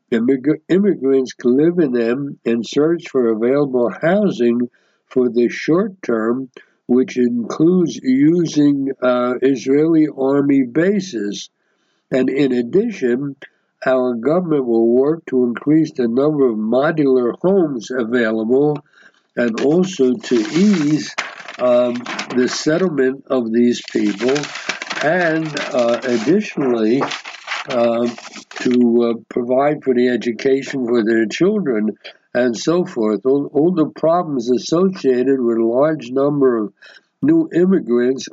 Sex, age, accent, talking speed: male, 60-79, American, 115 wpm